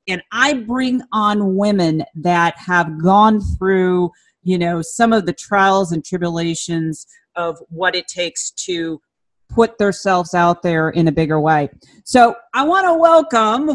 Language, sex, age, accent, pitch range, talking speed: English, female, 40-59, American, 170-225 Hz, 155 wpm